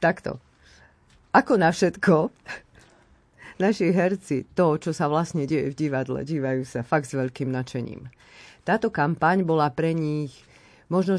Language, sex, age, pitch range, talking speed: Slovak, female, 50-69, 125-160 Hz, 135 wpm